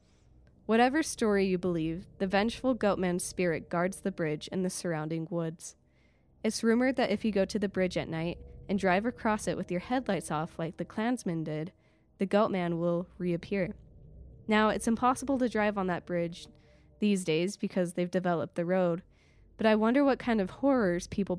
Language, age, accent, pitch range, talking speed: English, 20-39, American, 170-205 Hz, 180 wpm